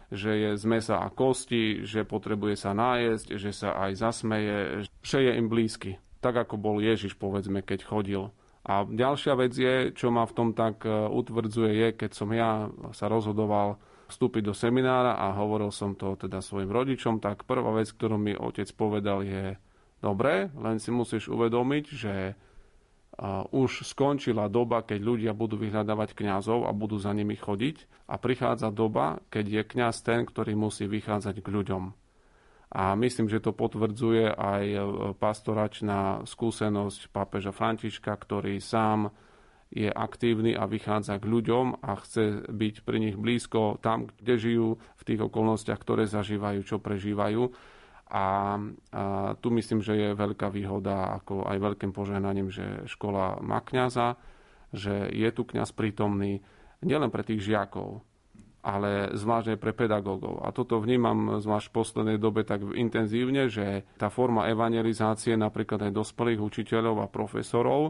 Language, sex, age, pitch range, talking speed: Slovak, male, 40-59, 100-115 Hz, 155 wpm